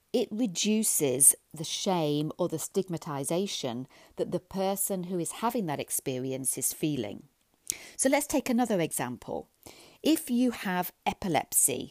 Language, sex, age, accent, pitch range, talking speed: English, female, 40-59, British, 165-225 Hz, 130 wpm